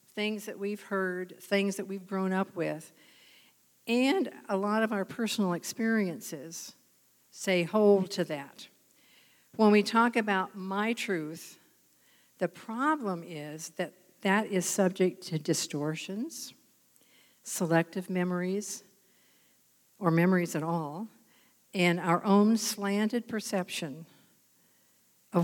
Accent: American